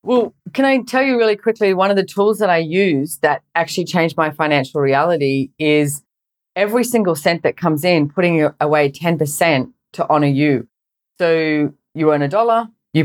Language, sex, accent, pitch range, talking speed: English, female, Australian, 145-180 Hz, 180 wpm